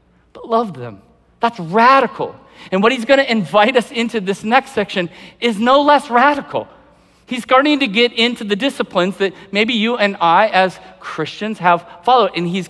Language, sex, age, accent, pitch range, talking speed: English, male, 50-69, American, 160-215 Hz, 175 wpm